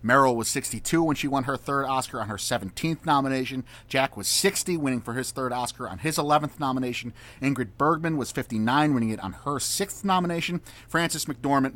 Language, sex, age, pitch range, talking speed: English, male, 30-49, 120-165 Hz, 190 wpm